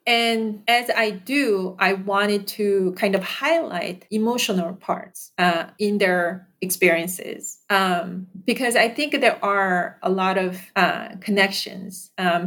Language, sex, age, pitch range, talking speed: English, female, 40-59, 185-220 Hz, 135 wpm